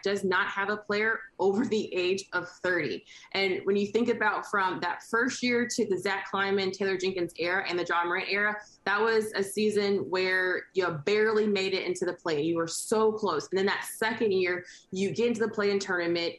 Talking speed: 210 wpm